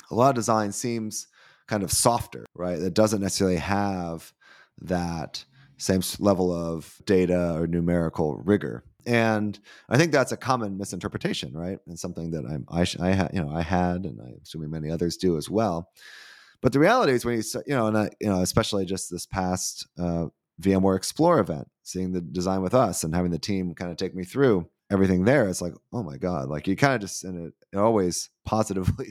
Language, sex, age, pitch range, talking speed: English, male, 30-49, 85-105 Hz, 205 wpm